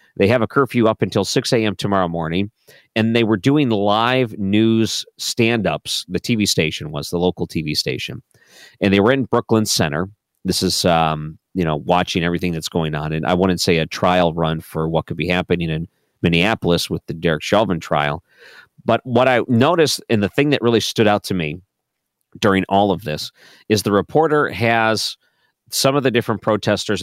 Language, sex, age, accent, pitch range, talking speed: English, male, 40-59, American, 85-115 Hz, 190 wpm